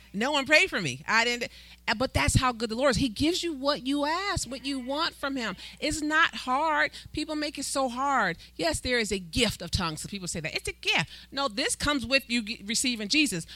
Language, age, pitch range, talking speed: English, 40-59, 195-280 Hz, 240 wpm